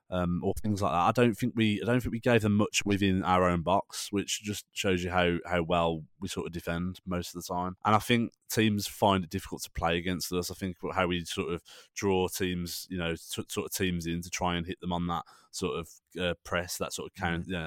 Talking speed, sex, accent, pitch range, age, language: 260 wpm, male, British, 85-105 Hz, 20-39, English